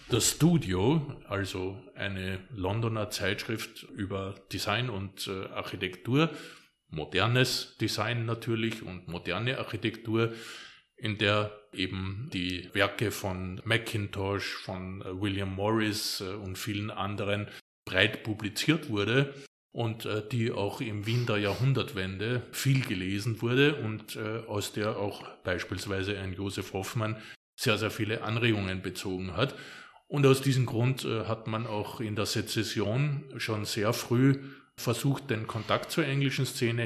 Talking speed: 125 wpm